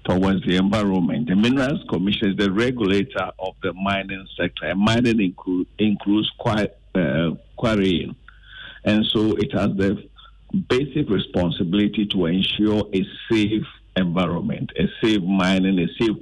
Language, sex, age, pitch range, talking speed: English, male, 50-69, 100-145 Hz, 135 wpm